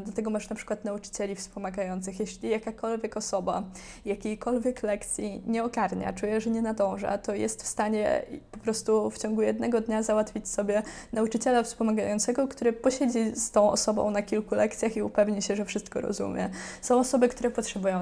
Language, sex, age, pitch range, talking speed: Polish, female, 20-39, 200-225 Hz, 165 wpm